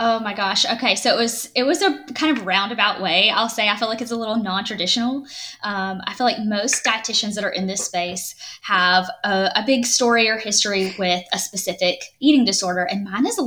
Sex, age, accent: female, 10-29, American